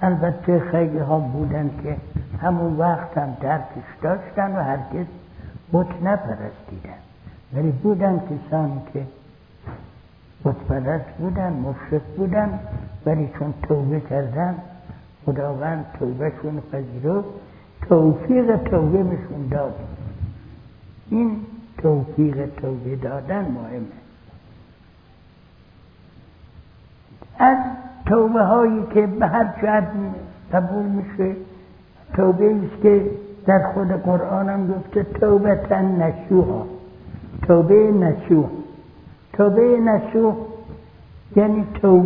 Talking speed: 95 wpm